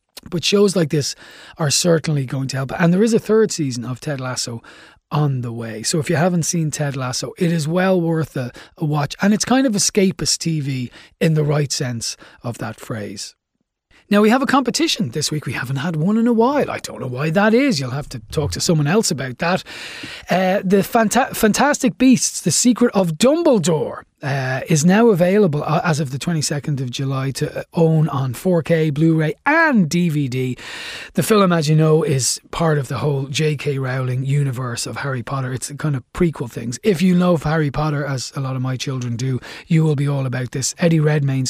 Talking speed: 205 wpm